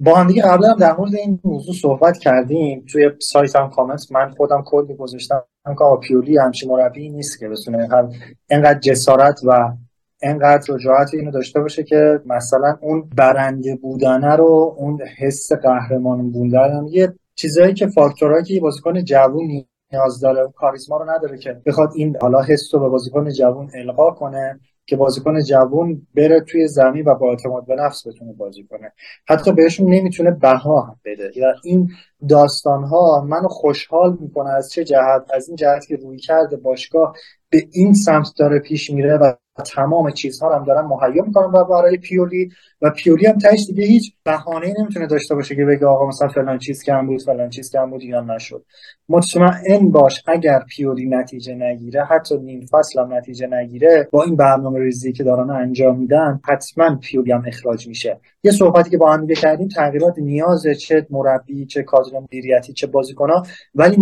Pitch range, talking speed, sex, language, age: 130-160 Hz, 180 wpm, male, Persian, 20-39